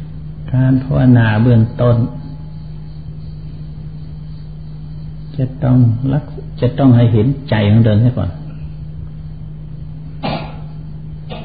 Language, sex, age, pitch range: Thai, male, 60-79, 110-150 Hz